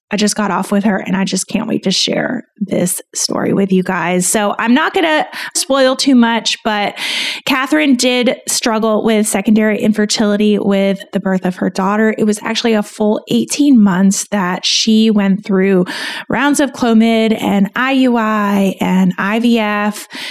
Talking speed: 170 wpm